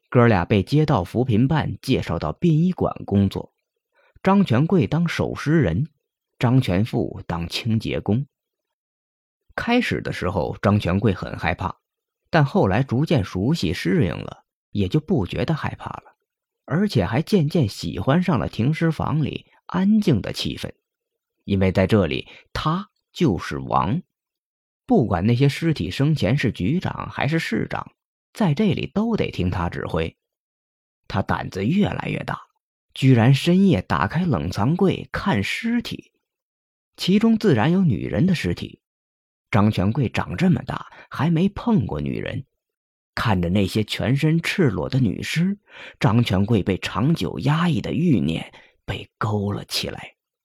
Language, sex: Chinese, male